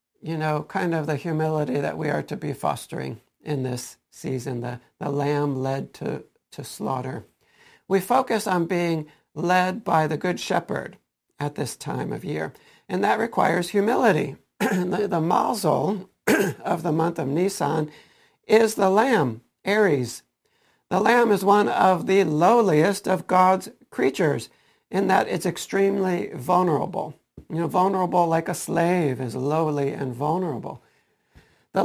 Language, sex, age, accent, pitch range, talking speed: English, male, 60-79, American, 150-195 Hz, 145 wpm